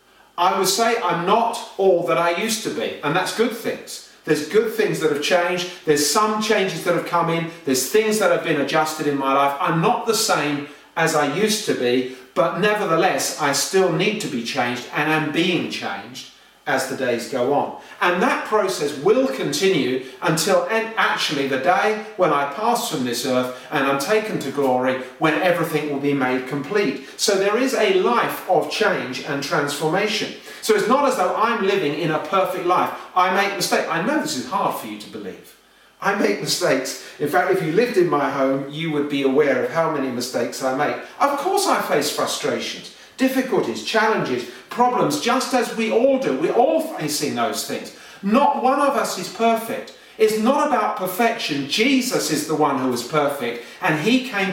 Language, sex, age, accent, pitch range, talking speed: English, male, 40-59, British, 145-215 Hz, 200 wpm